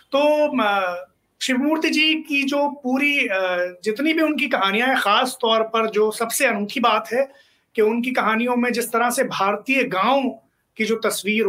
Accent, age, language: native, 30-49, Hindi